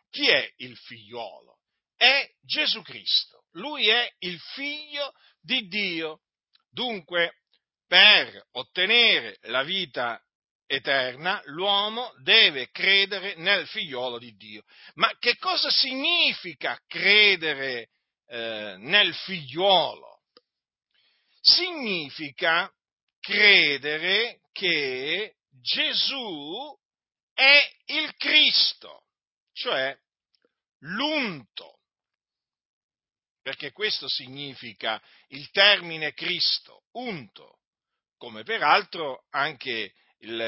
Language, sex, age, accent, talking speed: Italian, male, 50-69, native, 80 wpm